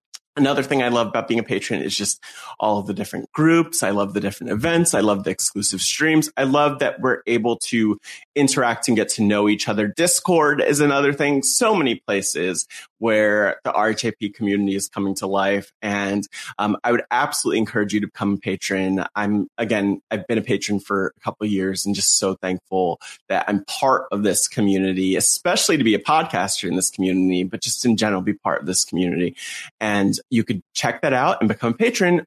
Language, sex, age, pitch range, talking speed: English, male, 20-39, 100-155 Hz, 210 wpm